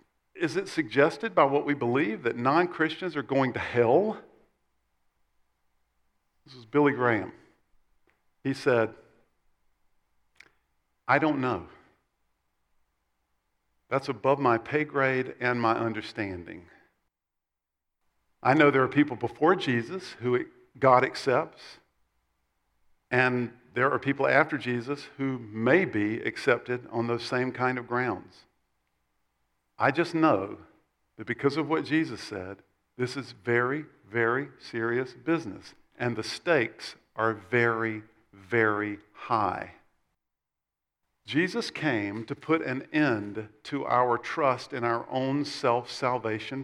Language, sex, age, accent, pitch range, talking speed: English, male, 50-69, American, 110-145 Hz, 115 wpm